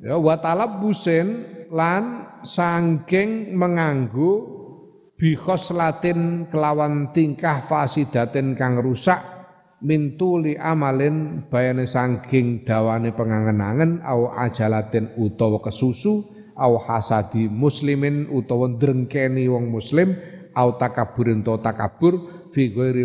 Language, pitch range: Indonesian, 125-160 Hz